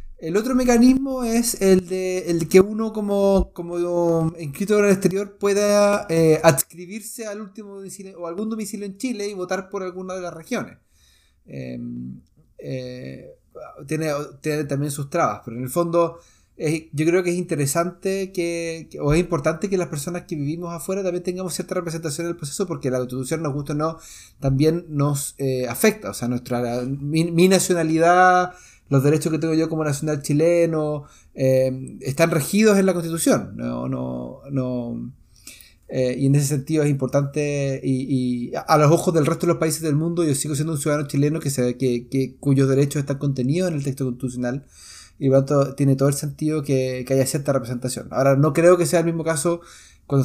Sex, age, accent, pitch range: male, 30-49, Argentinian, 135-175 Hz